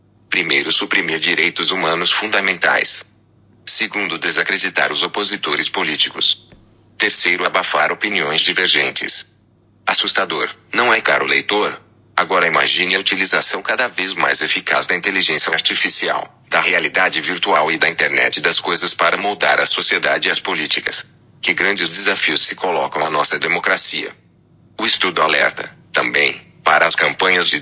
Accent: Brazilian